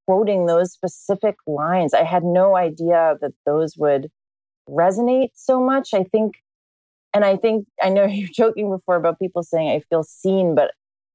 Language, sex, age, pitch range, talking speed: English, female, 30-49, 155-200 Hz, 165 wpm